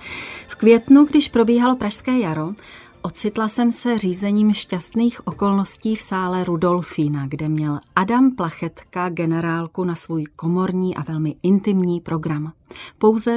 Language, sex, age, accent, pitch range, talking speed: Czech, female, 30-49, native, 165-210 Hz, 125 wpm